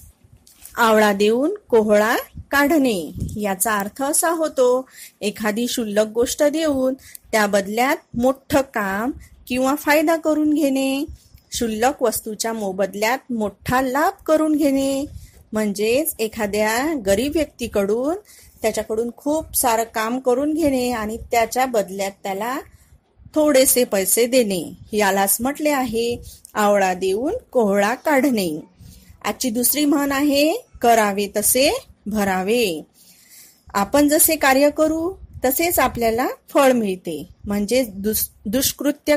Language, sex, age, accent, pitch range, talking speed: Marathi, female, 30-49, native, 215-285 Hz, 105 wpm